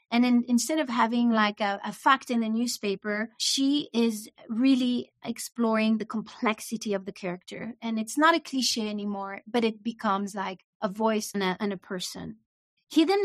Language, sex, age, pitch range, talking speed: English, female, 30-49, 210-250 Hz, 175 wpm